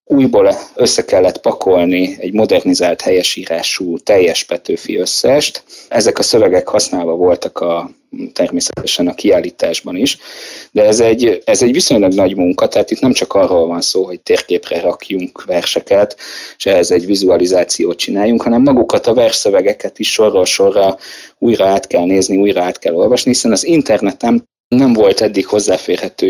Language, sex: Hungarian, male